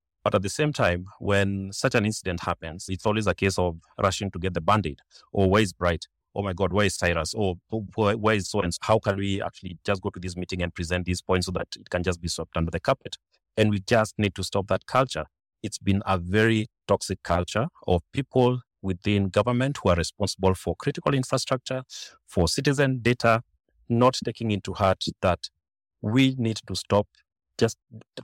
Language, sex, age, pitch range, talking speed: English, male, 30-49, 90-110 Hz, 205 wpm